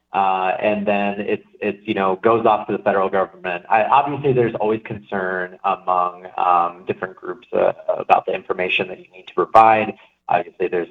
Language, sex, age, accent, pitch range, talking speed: English, male, 30-49, American, 95-110 Hz, 180 wpm